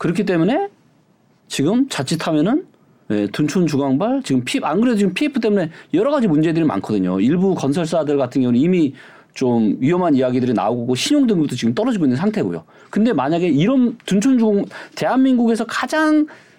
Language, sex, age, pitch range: Korean, male, 40-59, 170-240 Hz